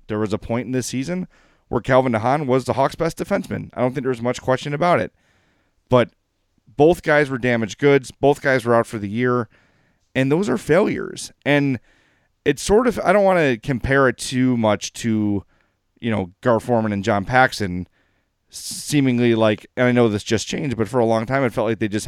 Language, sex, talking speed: English, male, 215 wpm